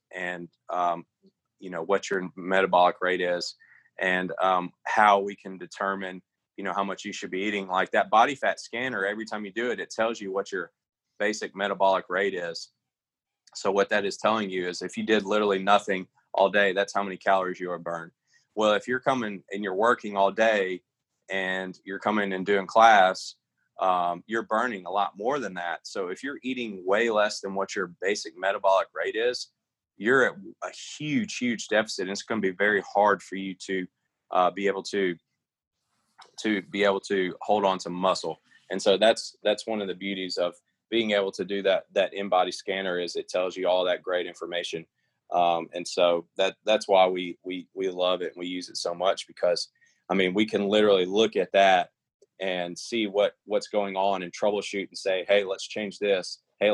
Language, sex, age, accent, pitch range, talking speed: English, male, 20-39, American, 90-105 Hz, 205 wpm